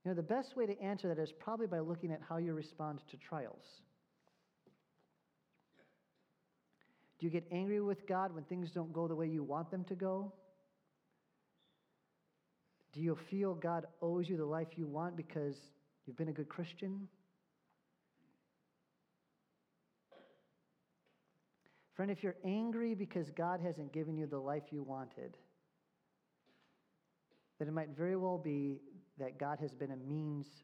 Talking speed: 150 wpm